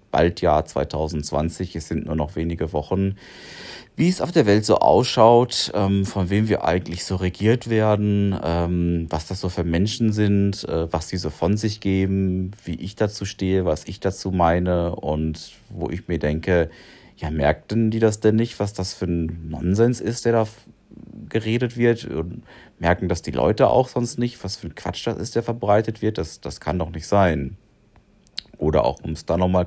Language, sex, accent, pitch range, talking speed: German, male, German, 80-100 Hz, 190 wpm